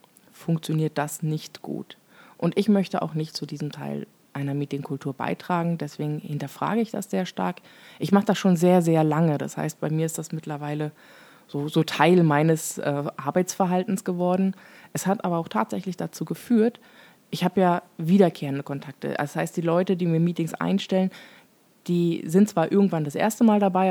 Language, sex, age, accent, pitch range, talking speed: German, female, 20-39, German, 155-200 Hz, 175 wpm